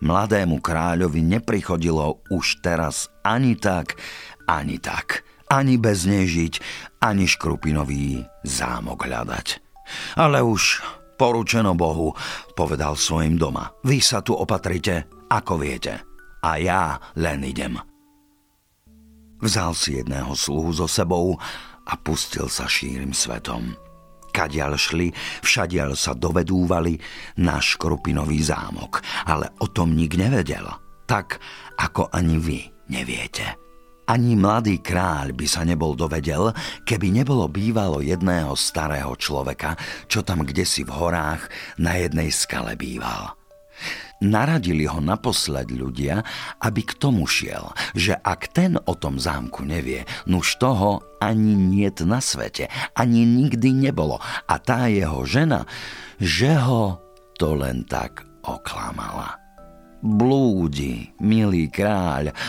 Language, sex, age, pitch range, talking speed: Slovak, male, 50-69, 75-110 Hz, 115 wpm